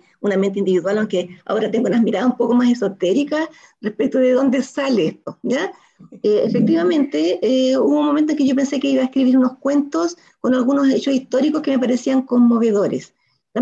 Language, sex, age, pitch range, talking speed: Spanish, female, 40-59, 210-290 Hz, 190 wpm